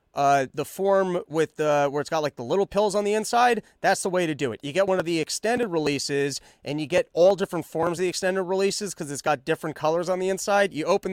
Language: English